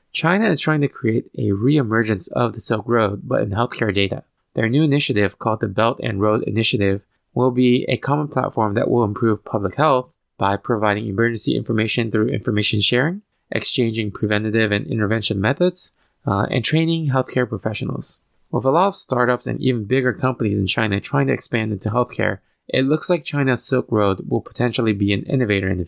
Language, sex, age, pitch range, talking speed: English, male, 20-39, 105-135 Hz, 185 wpm